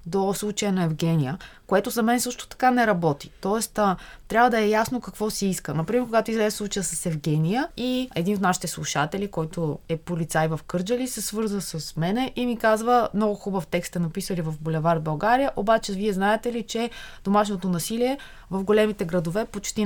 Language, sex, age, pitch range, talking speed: Bulgarian, female, 20-39, 175-220 Hz, 185 wpm